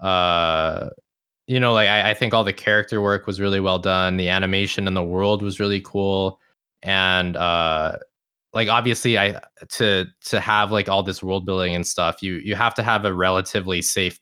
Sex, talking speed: male, 195 wpm